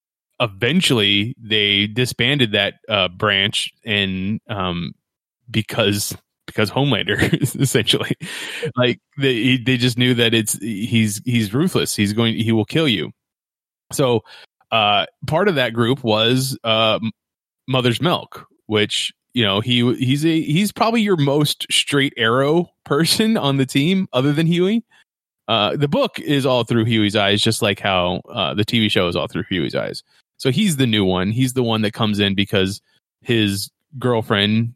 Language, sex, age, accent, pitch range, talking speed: English, male, 20-39, American, 105-135 Hz, 155 wpm